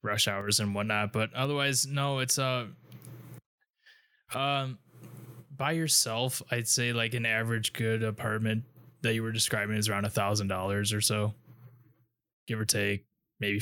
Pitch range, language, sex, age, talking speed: 110-125 Hz, English, male, 20-39, 150 wpm